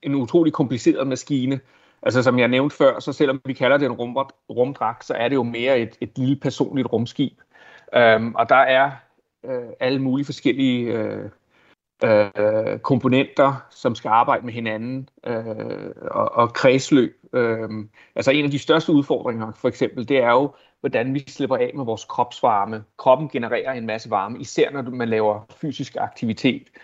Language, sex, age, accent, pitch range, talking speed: Danish, male, 30-49, native, 115-140 Hz, 170 wpm